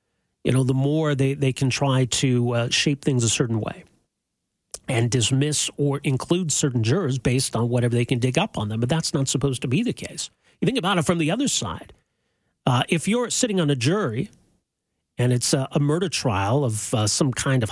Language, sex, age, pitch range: English, male, 40-59, 125-165 Hz